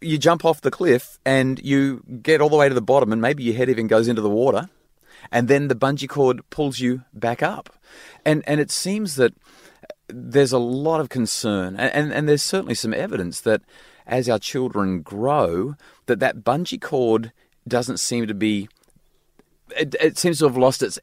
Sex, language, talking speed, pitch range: male, English, 195 wpm, 100-140 Hz